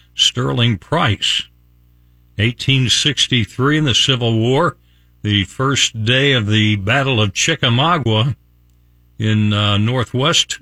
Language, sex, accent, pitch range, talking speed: English, male, American, 100-135 Hz, 100 wpm